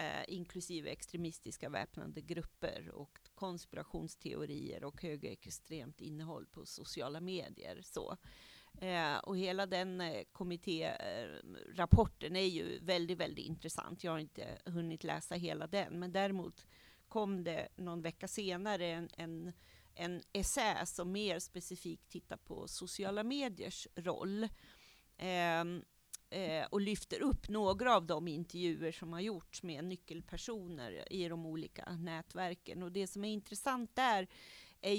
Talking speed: 130 wpm